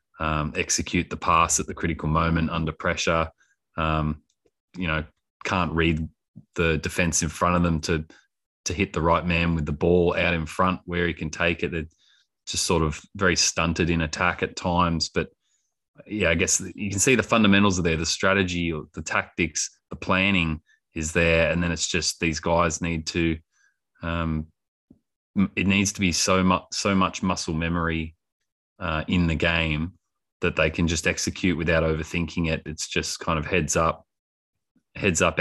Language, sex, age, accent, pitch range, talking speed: English, male, 20-39, Australian, 80-95 Hz, 180 wpm